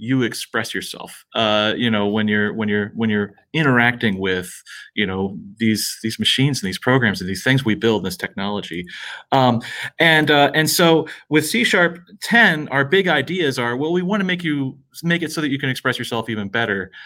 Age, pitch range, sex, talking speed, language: 30-49, 110-140 Hz, male, 200 wpm, English